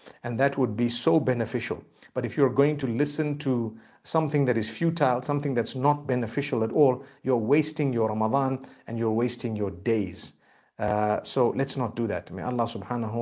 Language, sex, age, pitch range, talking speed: English, male, 50-69, 110-140 Hz, 185 wpm